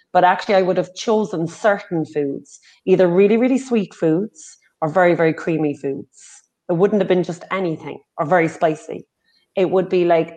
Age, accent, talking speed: 30-49, Irish, 180 wpm